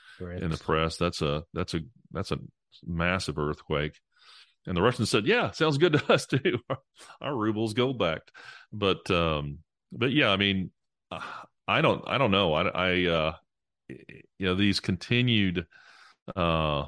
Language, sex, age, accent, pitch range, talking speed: English, male, 30-49, American, 80-90 Hz, 160 wpm